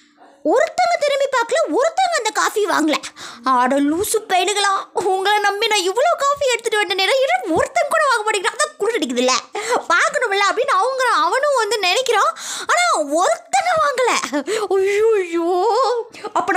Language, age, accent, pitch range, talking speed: Tamil, 20-39, native, 300-420 Hz, 125 wpm